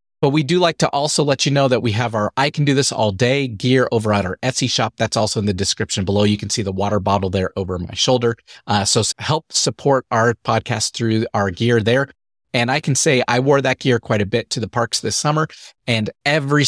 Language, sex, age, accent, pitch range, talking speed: English, male, 30-49, American, 105-135 Hz, 250 wpm